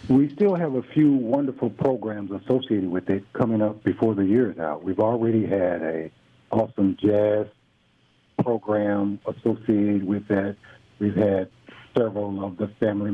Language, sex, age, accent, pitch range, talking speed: English, male, 60-79, American, 100-130 Hz, 150 wpm